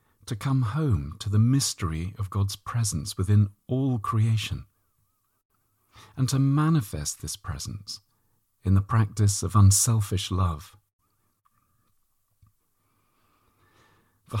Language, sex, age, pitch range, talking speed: English, male, 40-59, 100-115 Hz, 100 wpm